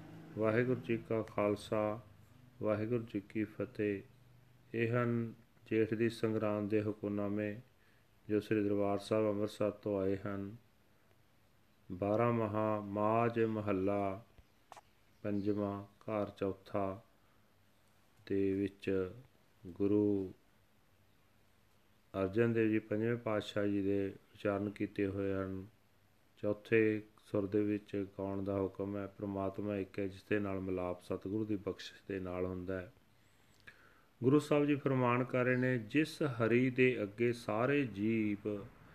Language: Punjabi